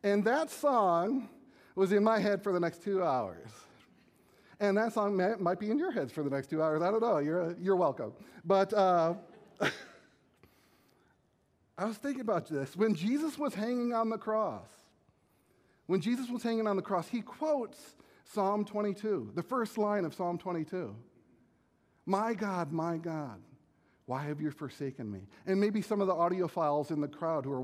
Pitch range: 145-205 Hz